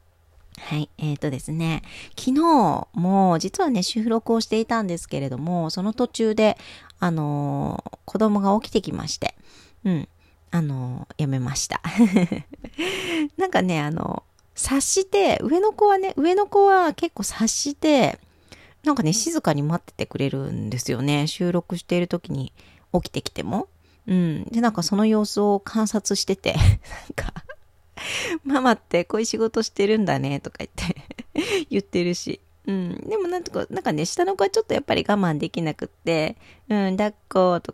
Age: 40-59